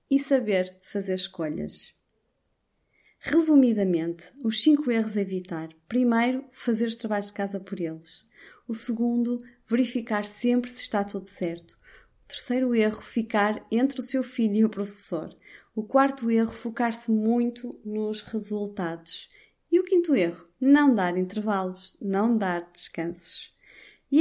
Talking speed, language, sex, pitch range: 135 wpm, Portuguese, female, 195-260 Hz